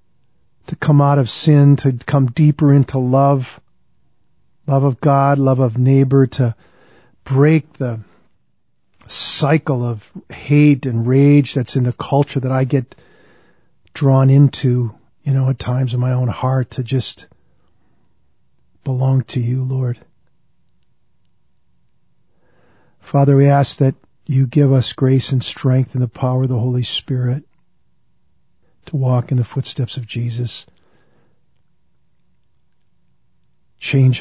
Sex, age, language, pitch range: male, 50-69, English, 120-140 Hz